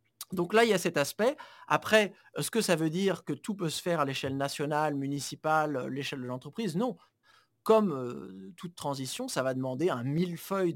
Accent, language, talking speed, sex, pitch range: French, French, 195 wpm, male, 130-165 Hz